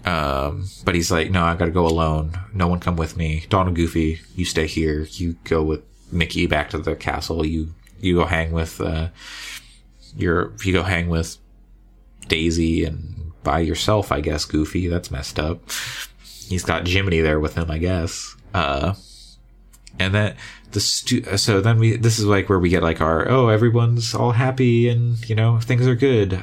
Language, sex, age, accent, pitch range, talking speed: English, male, 30-49, American, 85-105 Hz, 185 wpm